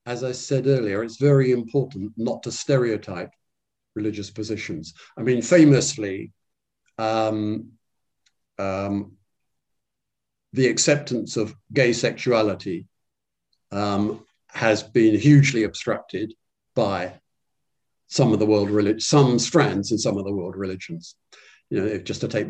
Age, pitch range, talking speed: 50-69, 100-120 Hz, 125 wpm